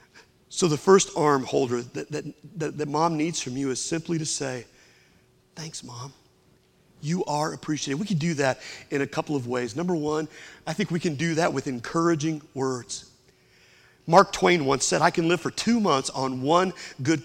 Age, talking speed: 40-59, 190 wpm